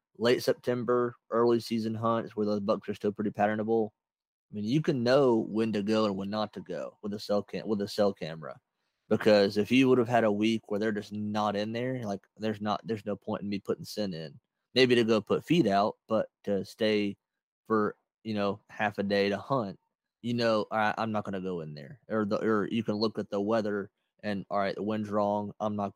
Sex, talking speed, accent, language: male, 240 wpm, American, English